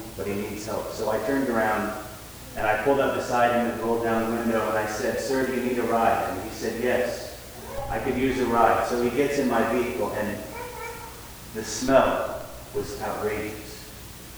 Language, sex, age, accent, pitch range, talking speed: English, male, 30-49, American, 110-140 Hz, 200 wpm